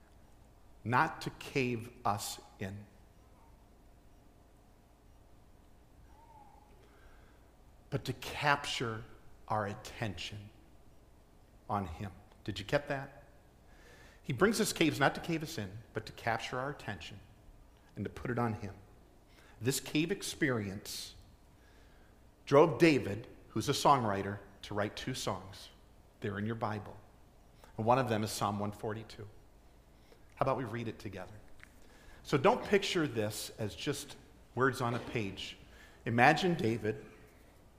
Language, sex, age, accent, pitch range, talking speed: English, male, 50-69, American, 100-130 Hz, 120 wpm